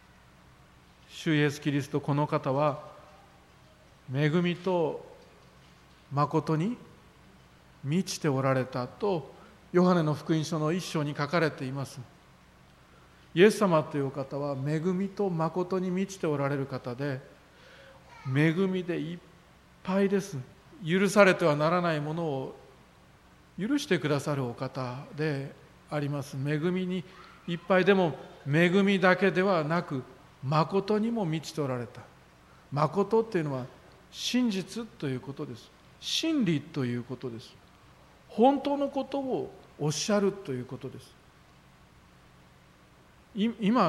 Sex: male